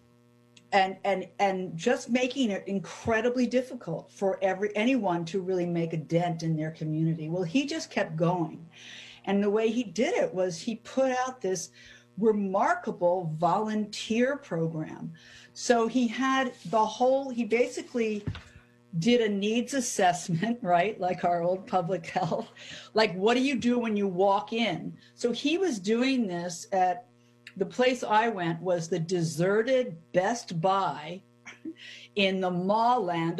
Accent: American